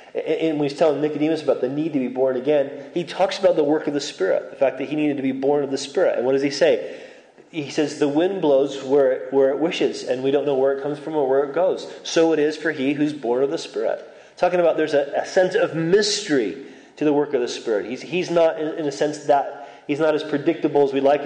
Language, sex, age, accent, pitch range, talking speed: English, male, 30-49, American, 140-170 Hz, 275 wpm